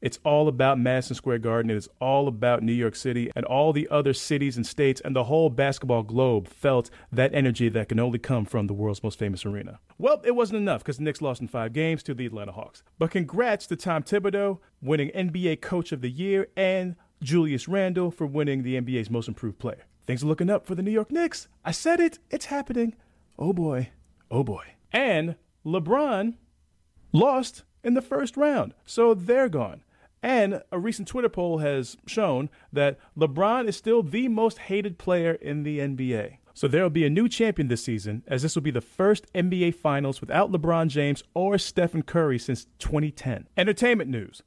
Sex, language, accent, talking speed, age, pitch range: male, English, American, 200 wpm, 30-49, 130-195 Hz